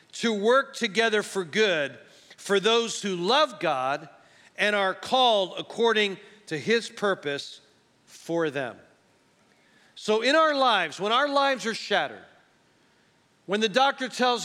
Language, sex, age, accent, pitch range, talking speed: English, male, 40-59, American, 190-245 Hz, 135 wpm